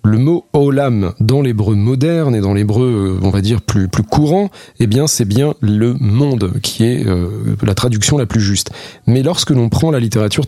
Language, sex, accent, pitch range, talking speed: French, male, French, 105-135 Hz, 200 wpm